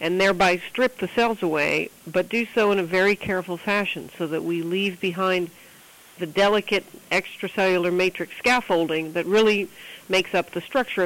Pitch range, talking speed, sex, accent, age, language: 175-210 Hz, 165 wpm, female, American, 50-69, English